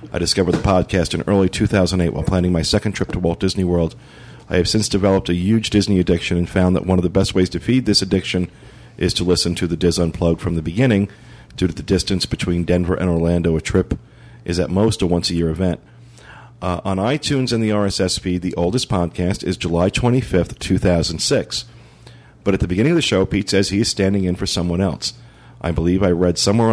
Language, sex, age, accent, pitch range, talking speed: English, male, 40-59, American, 85-105 Hz, 220 wpm